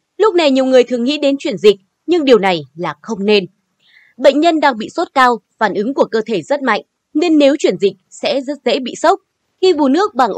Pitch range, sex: 205-300 Hz, female